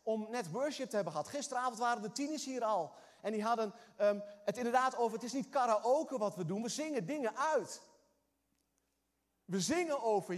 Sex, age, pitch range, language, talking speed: male, 30-49, 175-250 Hz, Dutch, 185 wpm